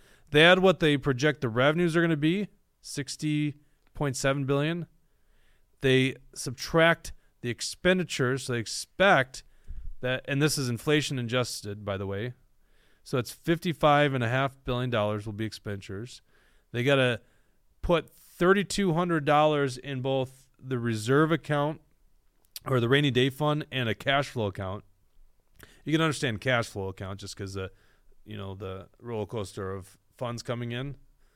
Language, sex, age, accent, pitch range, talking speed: English, male, 30-49, American, 105-150 Hz, 165 wpm